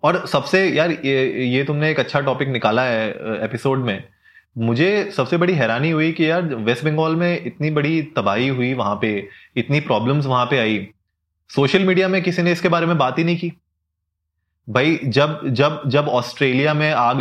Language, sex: Hindi, male